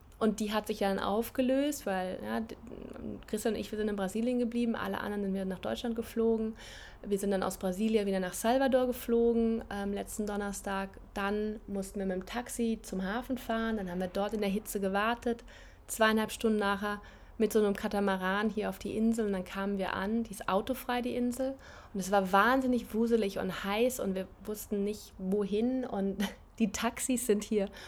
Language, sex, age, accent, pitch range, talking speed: German, female, 20-39, German, 195-230 Hz, 190 wpm